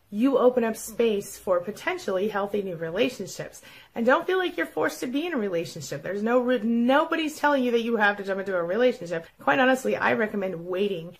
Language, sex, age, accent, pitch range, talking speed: English, female, 30-49, American, 175-230 Hz, 210 wpm